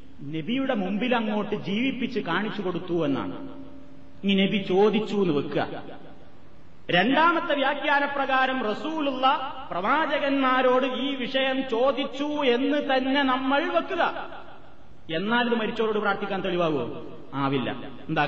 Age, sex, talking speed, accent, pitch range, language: 30-49, male, 95 wpm, native, 205-280 Hz, Malayalam